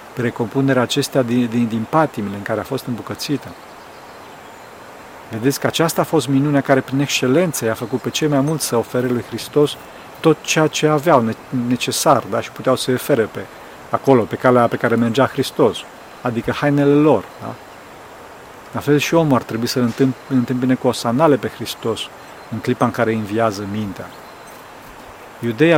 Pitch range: 115-140 Hz